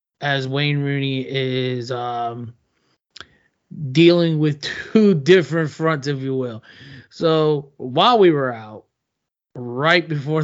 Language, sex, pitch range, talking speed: English, male, 130-155 Hz, 115 wpm